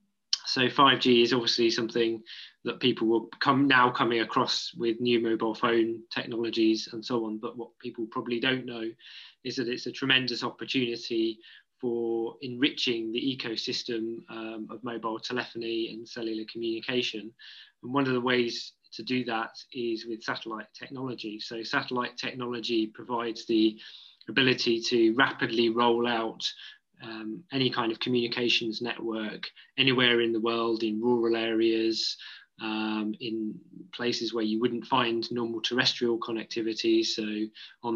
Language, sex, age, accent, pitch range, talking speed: English, male, 20-39, British, 115-125 Hz, 140 wpm